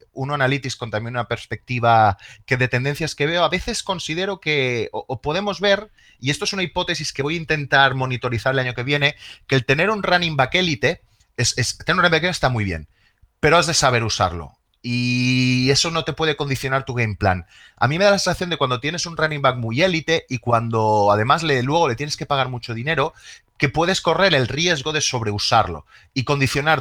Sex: male